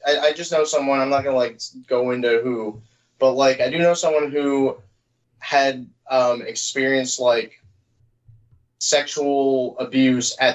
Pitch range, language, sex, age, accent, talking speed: 115-135 Hz, English, male, 20-39, American, 150 wpm